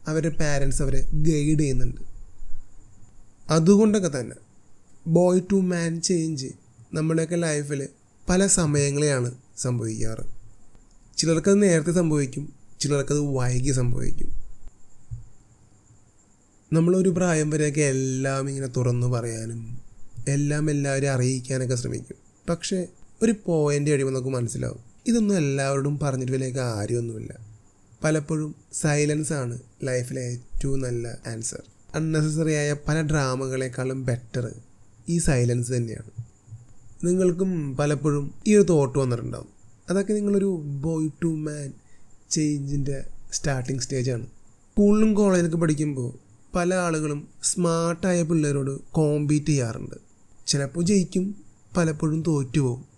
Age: 30-49